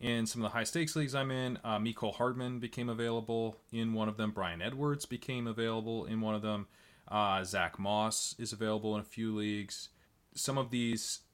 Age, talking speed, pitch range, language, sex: 20-39, 195 wpm, 100-120 Hz, English, male